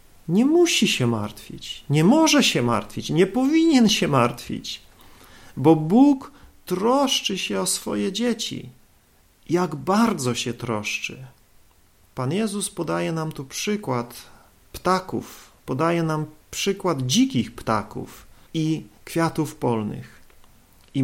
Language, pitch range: Polish, 130-200 Hz